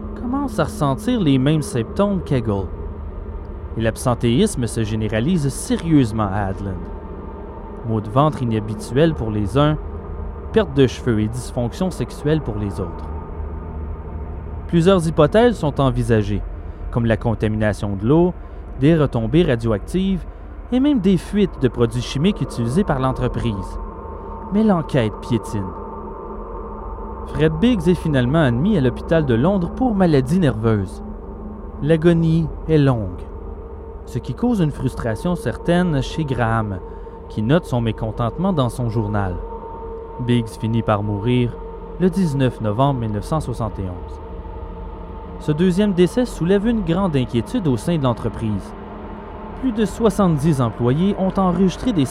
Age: 30-49